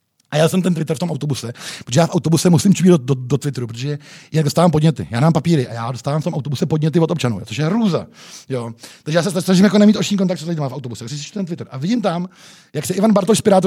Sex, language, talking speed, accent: male, Czech, 270 wpm, native